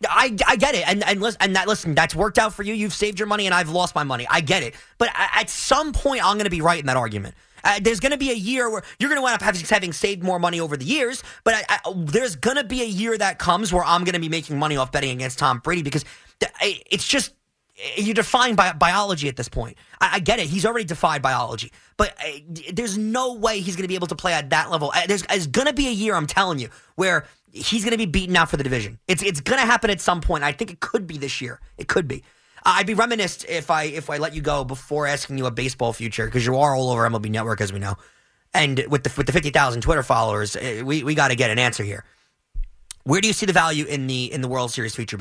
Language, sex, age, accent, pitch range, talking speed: English, male, 30-49, American, 130-205 Hz, 275 wpm